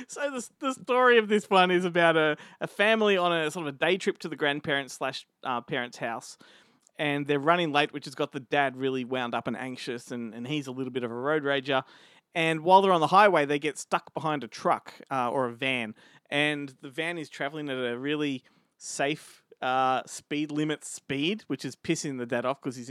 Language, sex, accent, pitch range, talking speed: English, male, Australian, 125-160 Hz, 230 wpm